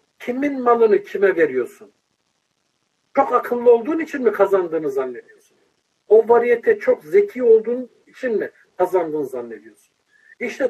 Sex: male